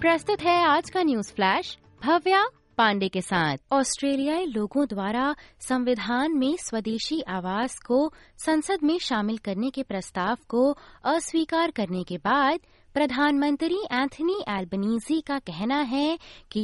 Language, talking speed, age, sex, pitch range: Hindi, 130 wpm, 20-39, female, 210-300 Hz